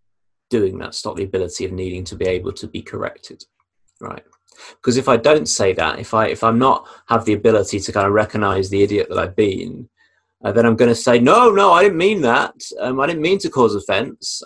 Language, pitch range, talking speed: English, 100-120 Hz, 235 wpm